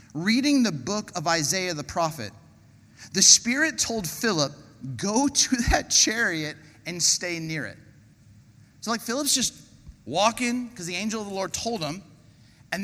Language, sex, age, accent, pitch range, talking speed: English, male, 30-49, American, 140-215 Hz, 155 wpm